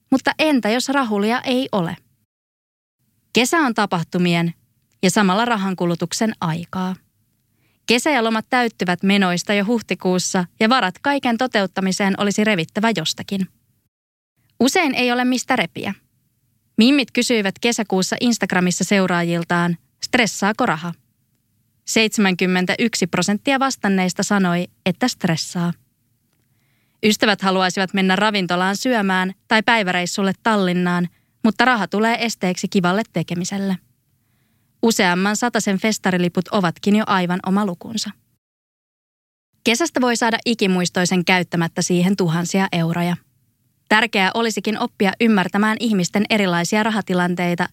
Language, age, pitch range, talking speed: Finnish, 20-39, 175-225 Hz, 105 wpm